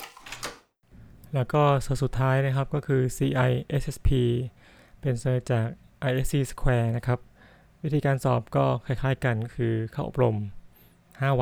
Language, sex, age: Thai, male, 20-39